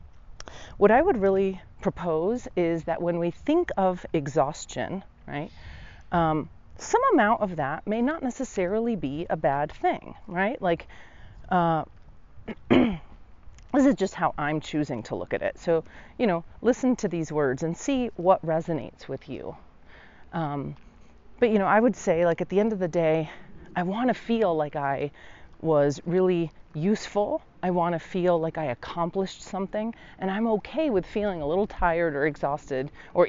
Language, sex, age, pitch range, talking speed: English, female, 30-49, 155-210 Hz, 170 wpm